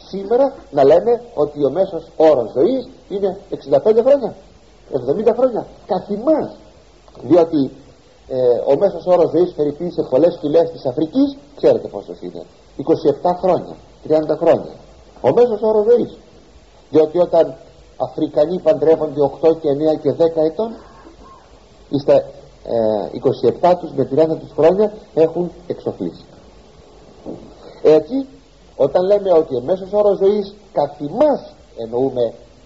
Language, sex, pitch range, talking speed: Greek, male, 140-205 Hz, 120 wpm